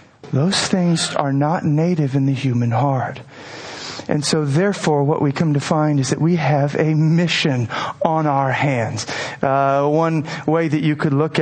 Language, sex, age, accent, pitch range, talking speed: English, male, 40-59, American, 155-225 Hz, 175 wpm